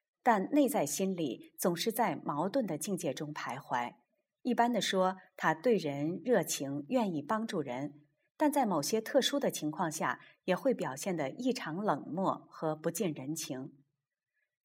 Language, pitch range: Chinese, 155-250 Hz